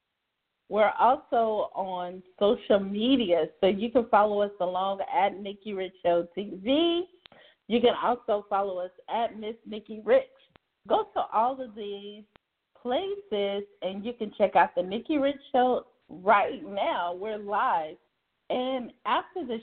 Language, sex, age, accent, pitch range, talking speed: English, female, 40-59, American, 195-260 Hz, 145 wpm